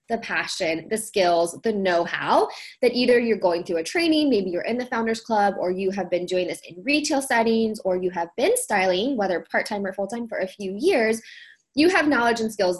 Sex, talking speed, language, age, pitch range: female, 225 wpm, English, 20-39, 200-255 Hz